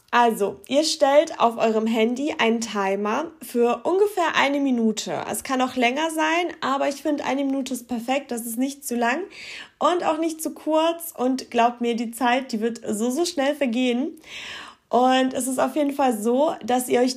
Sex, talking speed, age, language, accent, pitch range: female, 190 wpm, 20-39, German, German, 240-295 Hz